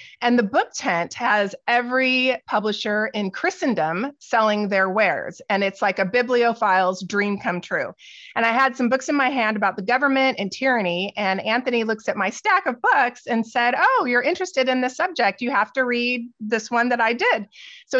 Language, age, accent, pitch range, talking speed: English, 30-49, American, 200-255 Hz, 195 wpm